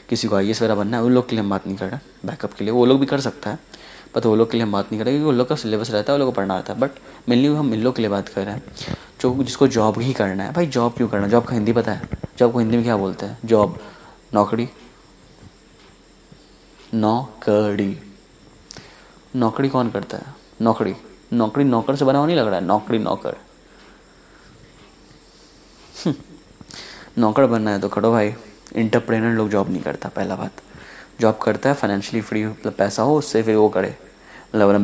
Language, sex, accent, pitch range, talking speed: Hindi, male, native, 100-125 Hz, 135 wpm